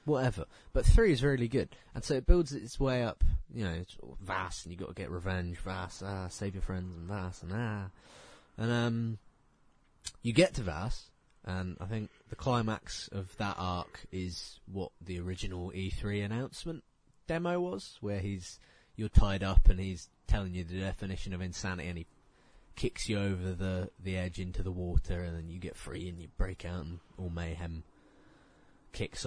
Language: English